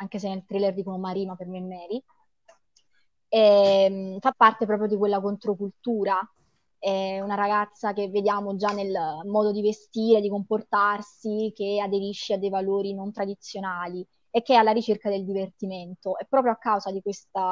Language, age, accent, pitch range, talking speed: Italian, 20-39, native, 195-220 Hz, 170 wpm